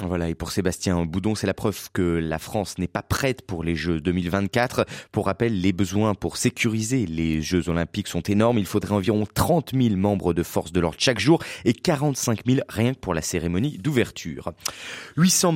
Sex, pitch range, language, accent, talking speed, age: male, 90-130 Hz, French, French, 195 wpm, 30-49